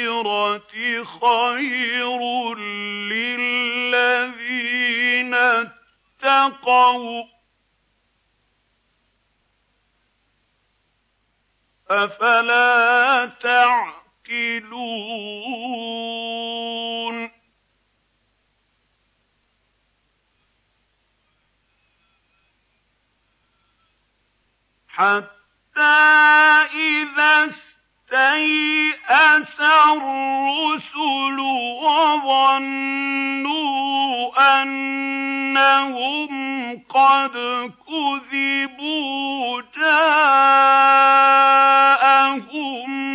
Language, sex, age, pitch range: Arabic, male, 50-69, 240-280 Hz